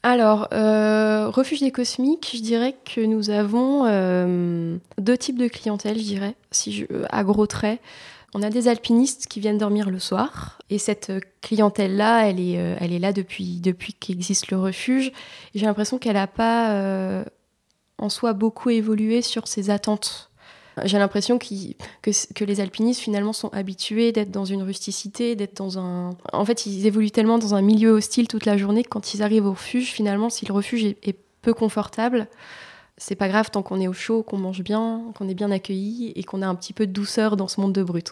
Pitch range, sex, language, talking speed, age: 200-235 Hz, female, French, 200 wpm, 20-39